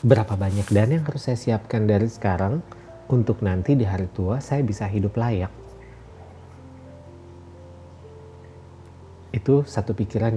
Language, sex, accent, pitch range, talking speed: Indonesian, male, native, 90-115 Hz, 120 wpm